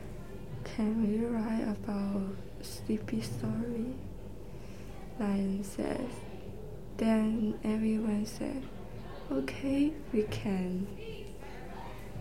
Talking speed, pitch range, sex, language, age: 75 wpm, 185-220 Hz, female, English, 20-39